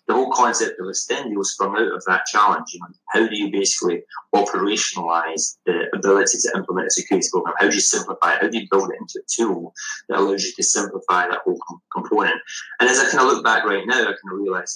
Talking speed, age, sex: 240 wpm, 20-39, male